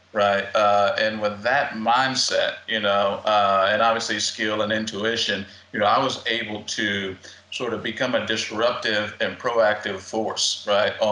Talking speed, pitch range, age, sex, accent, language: 155 wpm, 100-115 Hz, 50-69, male, American, English